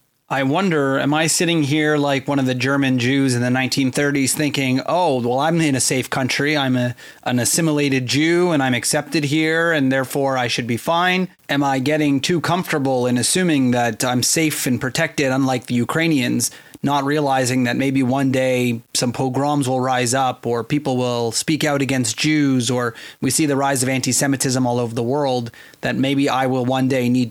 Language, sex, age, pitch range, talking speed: English, male, 30-49, 125-145 Hz, 195 wpm